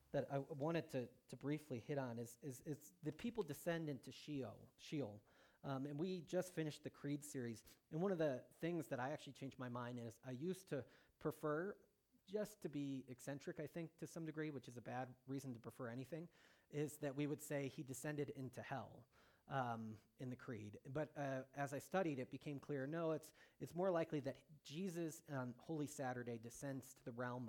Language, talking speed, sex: English, 205 wpm, male